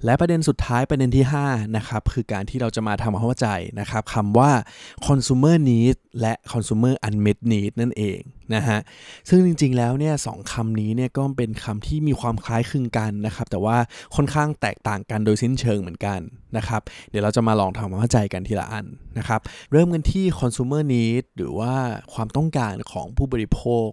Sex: male